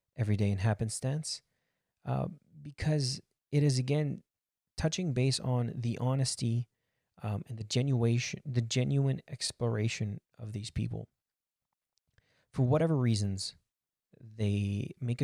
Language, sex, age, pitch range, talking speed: English, male, 30-49, 105-135 Hz, 115 wpm